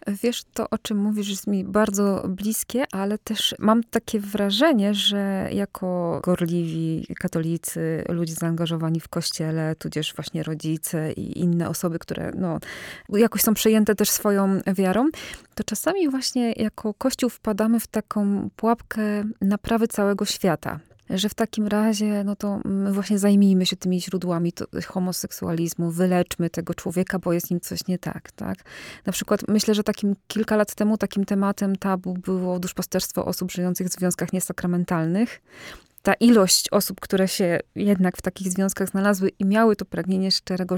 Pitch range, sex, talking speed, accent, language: 180-215 Hz, female, 155 wpm, native, Polish